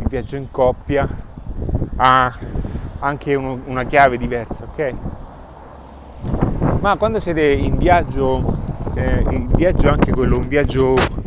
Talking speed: 120 wpm